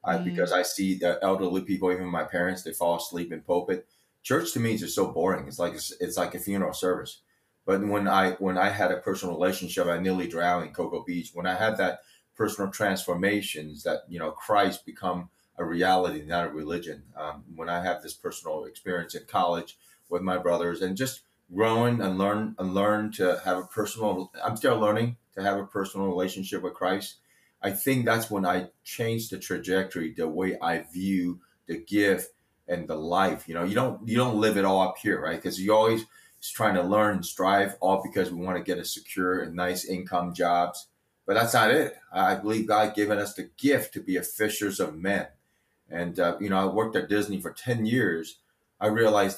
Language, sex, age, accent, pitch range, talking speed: English, male, 30-49, American, 90-105 Hz, 210 wpm